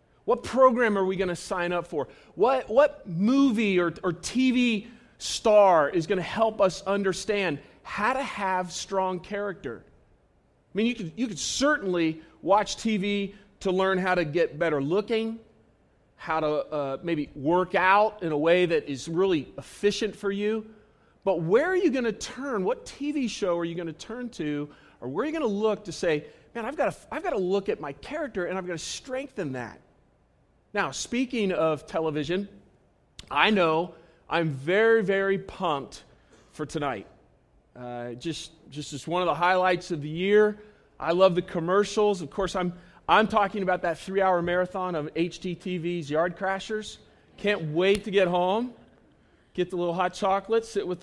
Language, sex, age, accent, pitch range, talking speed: English, male, 40-59, American, 170-210 Hz, 180 wpm